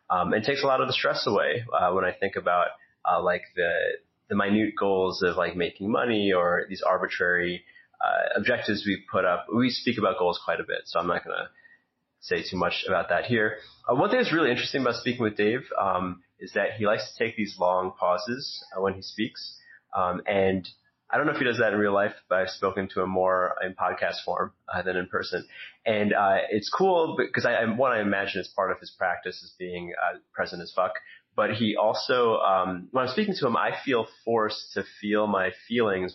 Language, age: English, 30-49